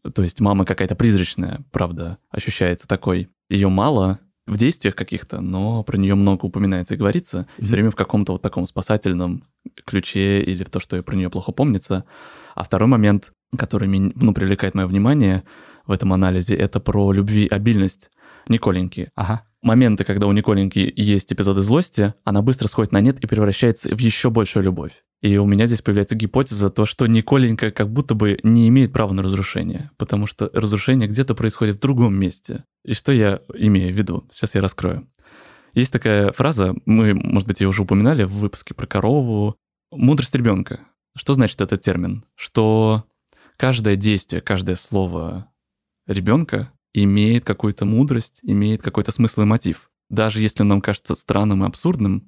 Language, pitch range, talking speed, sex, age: Russian, 95-115 Hz, 165 wpm, male, 20-39